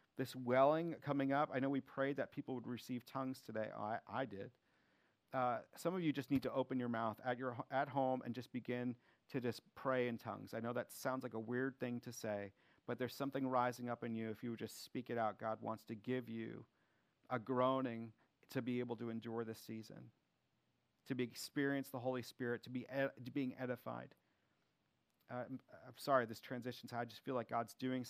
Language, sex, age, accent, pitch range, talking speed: English, male, 40-59, American, 115-135 Hz, 215 wpm